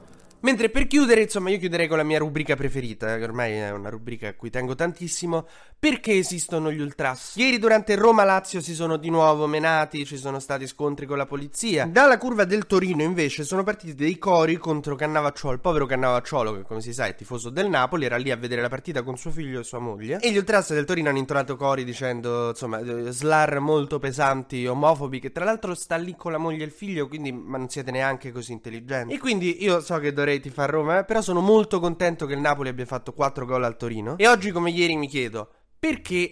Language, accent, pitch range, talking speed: Italian, native, 125-170 Hz, 225 wpm